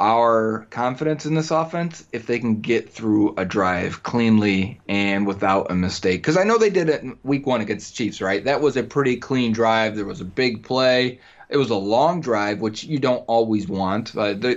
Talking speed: 225 wpm